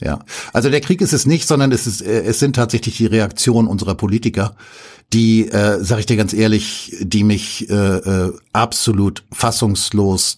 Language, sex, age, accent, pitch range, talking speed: German, male, 60-79, German, 110-135 Hz, 170 wpm